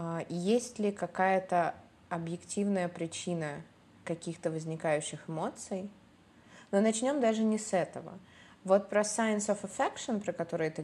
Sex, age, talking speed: female, 20-39, 120 wpm